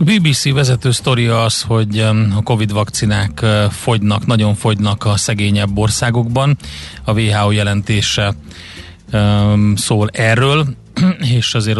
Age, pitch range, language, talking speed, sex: 30-49, 105-120 Hz, Hungarian, 105 wpm, male